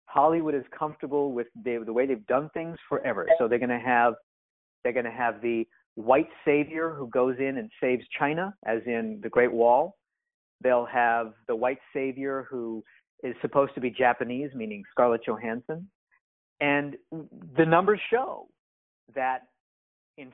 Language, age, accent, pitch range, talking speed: English, 50-69, American, 120-155 Hz, 150 wpm